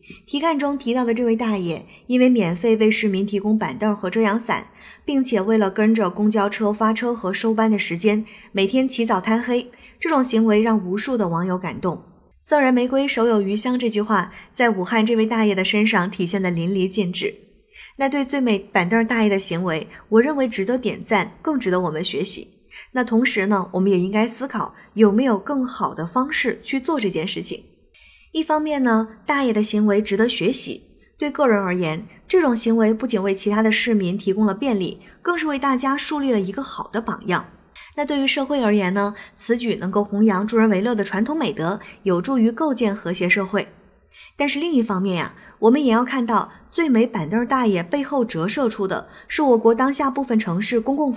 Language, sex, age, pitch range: Chinese, female, 20-39, 200-250 Hz